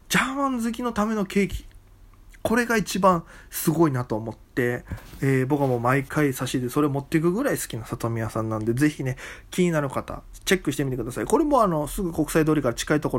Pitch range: 125-165 Hz